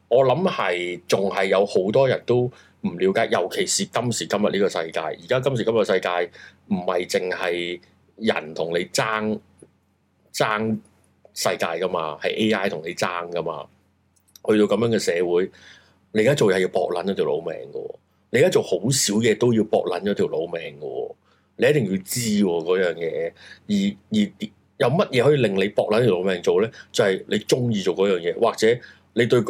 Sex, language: male, Chinese